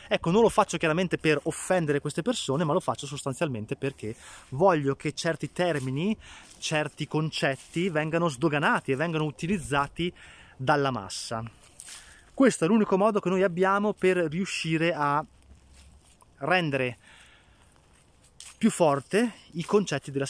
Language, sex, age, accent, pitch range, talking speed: Italian, male, 20-39, native, 125-165 Hz, 125 wpm